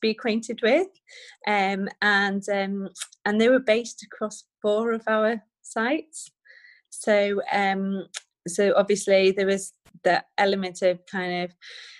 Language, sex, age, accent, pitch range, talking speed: English, female, 30-49, British, 185-210 Hz, 130 wpm